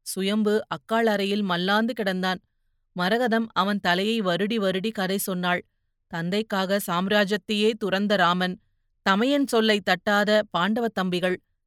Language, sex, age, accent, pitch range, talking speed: Tamil, female, 30-49, native, 185-230 Hz, 105 wpm